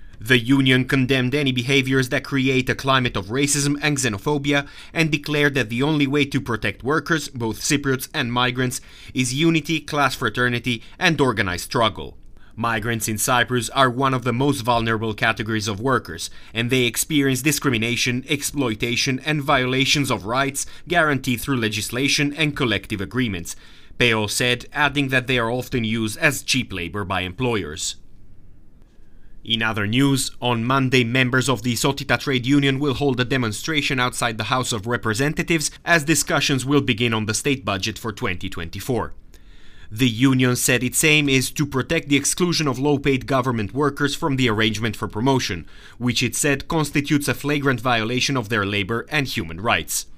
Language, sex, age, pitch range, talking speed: English, male, 30-49, 115-140 Hz, 160 wpm